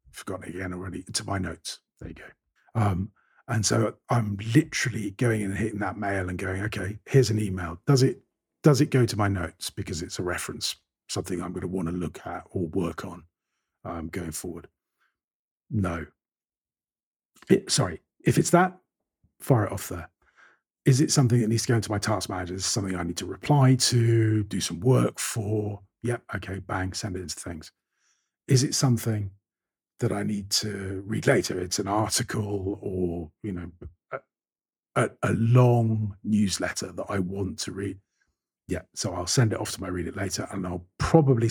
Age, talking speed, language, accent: 40-59, 190 wpm, English, British